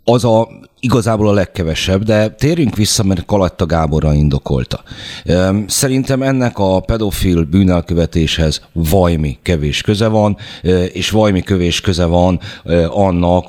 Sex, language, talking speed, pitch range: male, Hungarian, 120 wpm, 80-95 Hz